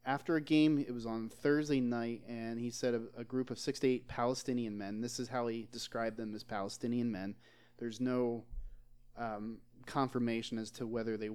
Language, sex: English, male